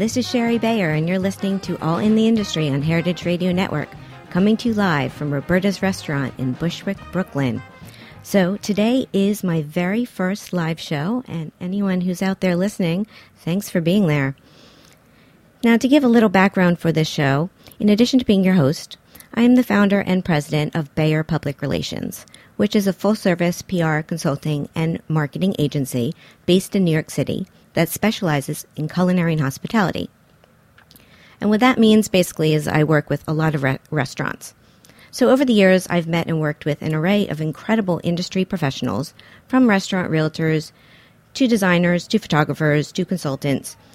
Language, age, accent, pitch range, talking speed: English, 50-69, American, 155-200 Hz, 170 wpm